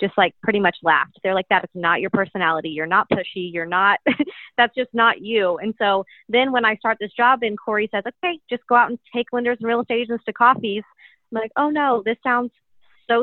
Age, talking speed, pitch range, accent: 30-49, 235 wpm, 190-245 Hz, American